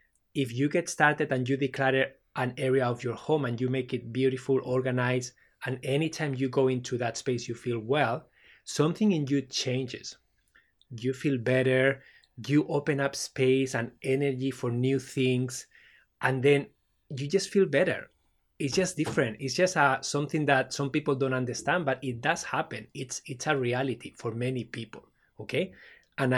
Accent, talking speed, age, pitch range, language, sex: Spanish, 170 wpm, 20-39, 125-140 Hz, English, male